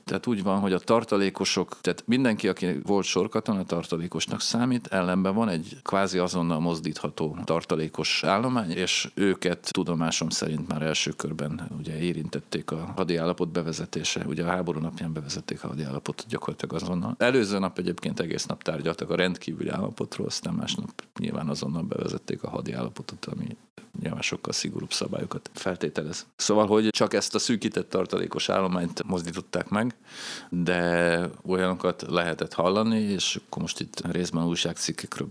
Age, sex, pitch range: 40-59, male, 85-95 Hz